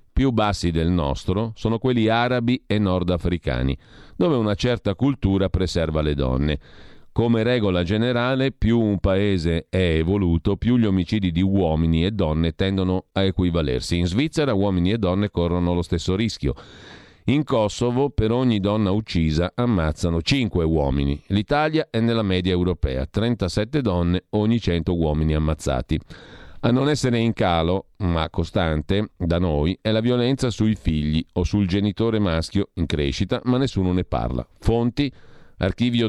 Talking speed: 150 wpm